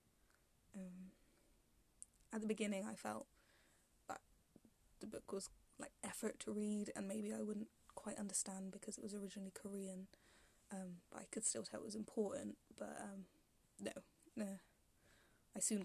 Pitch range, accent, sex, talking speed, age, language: 190-215 Hz, British, female, 150 wpm, 10-29, English